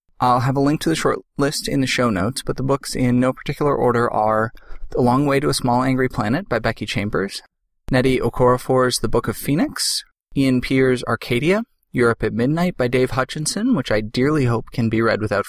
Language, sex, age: English, male, 20-39